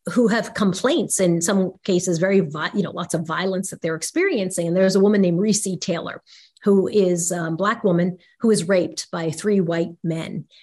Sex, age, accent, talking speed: female, 40-59, American, 190 wpm